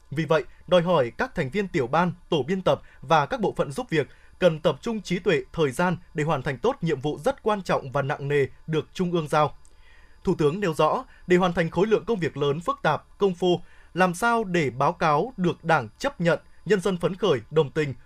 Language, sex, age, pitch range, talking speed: Vietnamese, male, 20-39, 150-190 Hz, 240 wpm